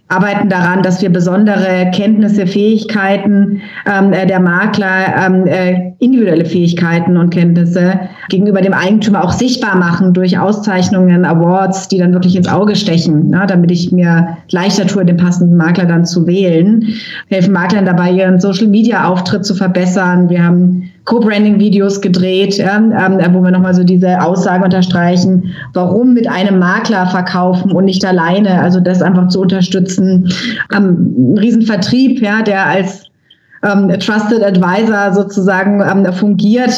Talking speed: 140 wpm